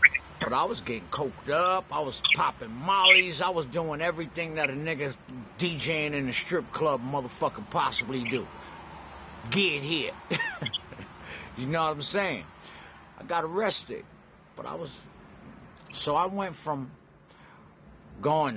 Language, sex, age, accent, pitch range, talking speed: English, male, 50-69, American, 140-180 Hz, 140 wpm